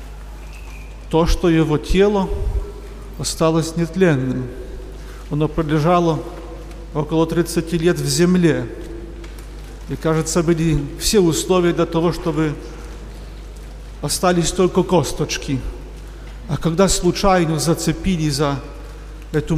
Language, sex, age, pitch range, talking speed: Polish, male, 50-69, 150-175 Hz, 90 wpm